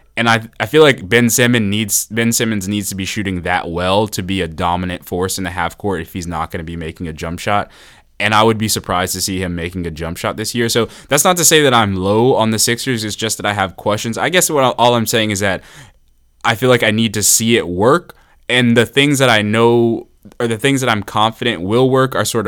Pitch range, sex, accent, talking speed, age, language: 95-115 Hz, male, American, 265 wpm, 20-39, English